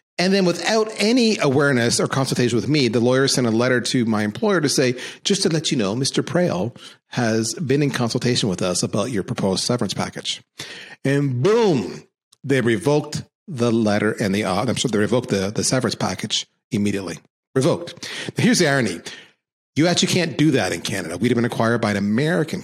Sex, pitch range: male, 115-175 Hz